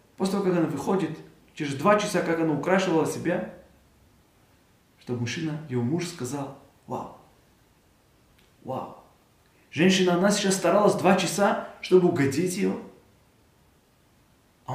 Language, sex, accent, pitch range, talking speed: Russian, male, native, 150-235 Hz, 120 wpm